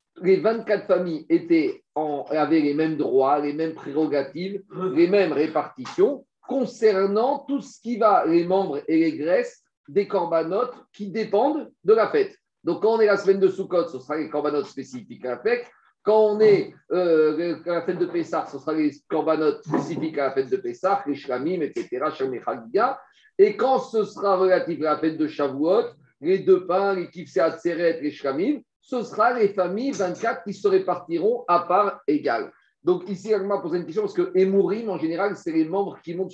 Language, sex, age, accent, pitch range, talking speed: French, male, 50-69, French, 165-270 Hz, 190 wpm